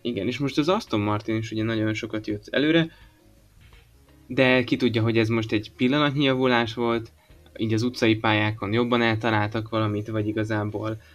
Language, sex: Hungarian, male